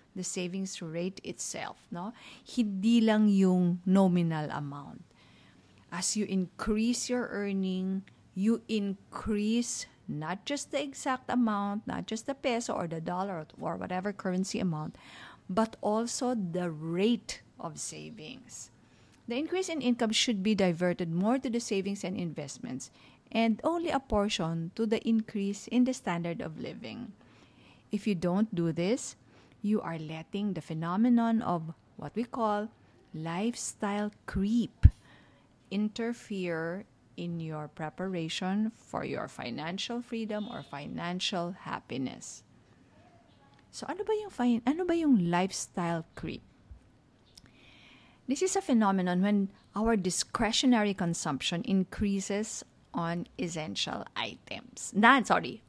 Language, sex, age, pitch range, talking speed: English, female, 50-69, 170-230 Hz, 125 wpm